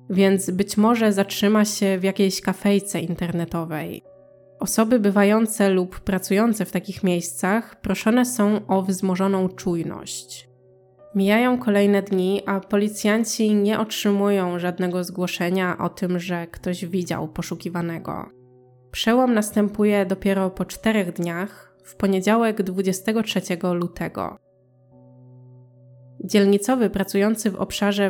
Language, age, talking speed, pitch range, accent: Polish, 20-39, 105 wpm, 180-205 Hz, native